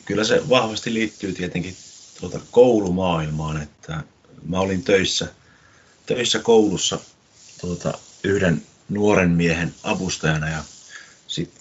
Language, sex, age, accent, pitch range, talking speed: Finnish, male, 30-49, native, 80-105 Hz, 105 wpm